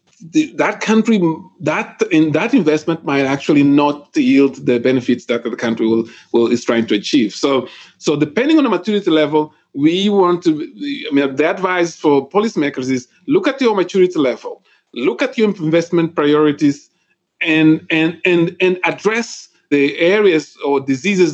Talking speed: 160 wpm